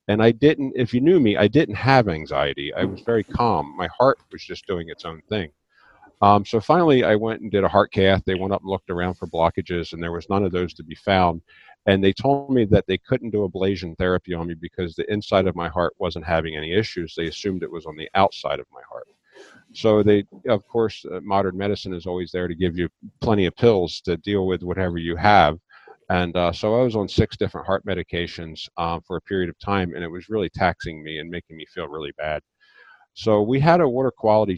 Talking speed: 240 wpm